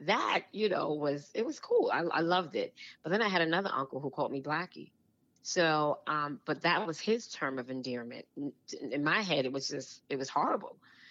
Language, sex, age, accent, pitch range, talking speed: English, female, 30-49, American, 140-165 Hz, 210 wpm